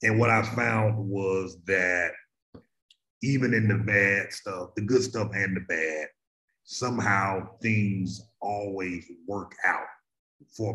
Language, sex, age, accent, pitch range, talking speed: English, male, 30-49, American, 95-115 Hz, 130 wpm